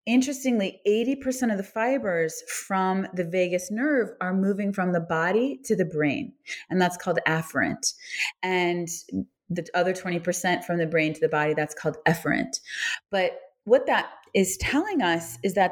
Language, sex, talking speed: English, female, 160 wpm